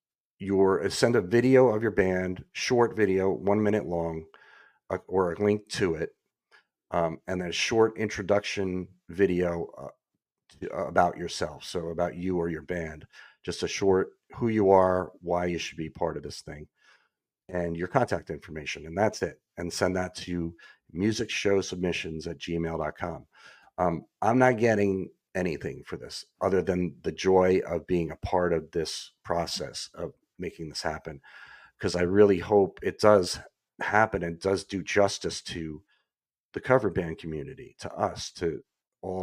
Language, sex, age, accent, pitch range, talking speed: English, male, 40-59, American, 85-100 Hz, 165 wpm